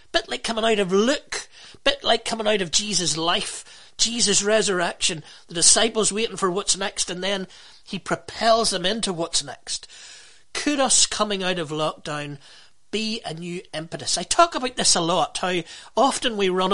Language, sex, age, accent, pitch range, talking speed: English, male, 40-59, British, 165-225 Hz, 175 wpm